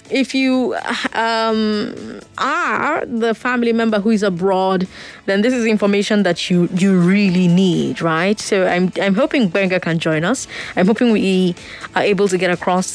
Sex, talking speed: female, 165 wpm